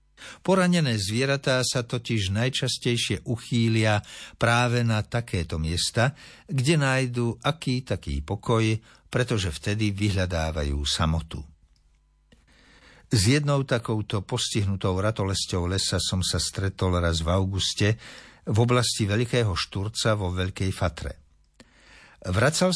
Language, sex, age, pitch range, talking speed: Slovak, male, 60-79, 90-130 Hz, 105 wpm